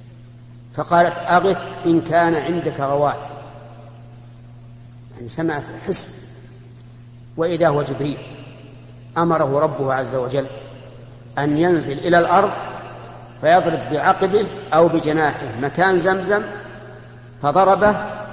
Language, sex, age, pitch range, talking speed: Arabic, male, 50-69, 120-165 Hz, 90 wpm